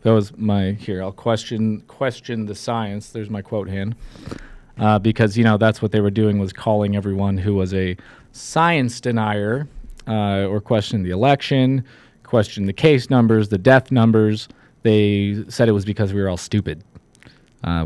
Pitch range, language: 105-140 Hz, English